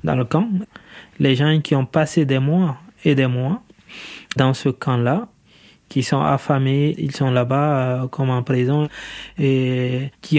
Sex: male